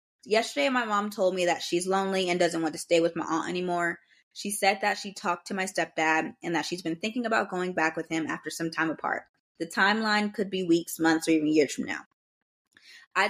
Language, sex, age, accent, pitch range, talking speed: English, female, 20-39, American, 165-200 Hz, 230 wpm